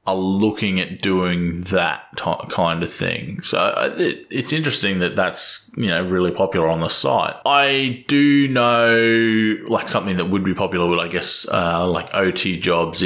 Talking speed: 175 wpm